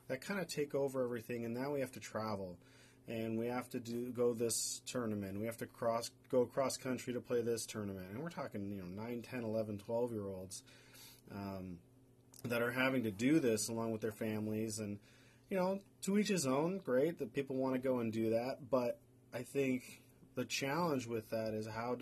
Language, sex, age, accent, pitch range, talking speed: English, male, 30-49, American, 110-130 Hz, 215 wpm